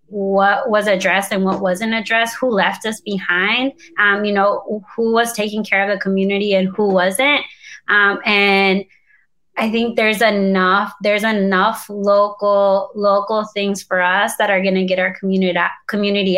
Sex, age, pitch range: female, 20-39, 185-215 Hz